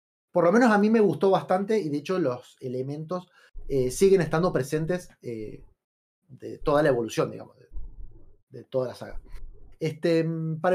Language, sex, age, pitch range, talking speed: Spanish, male, 30-49, 145-205 Hz, 160 wpm